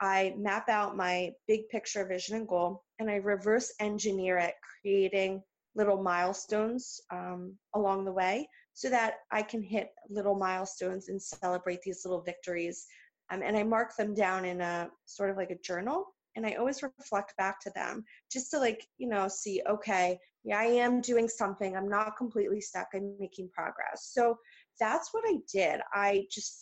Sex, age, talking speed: female, 30-49, 180 wpm